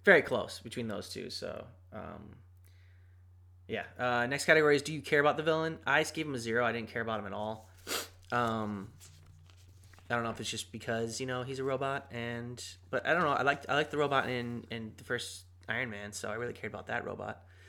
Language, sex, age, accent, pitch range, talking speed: English, male, 20-39, American, 95-125 Hz, 225 wpm